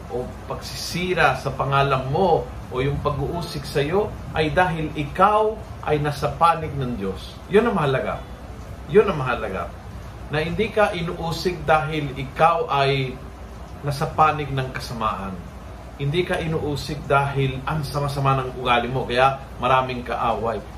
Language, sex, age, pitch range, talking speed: Filipino, male, 40-59, 130-180 Hz, 130 wpm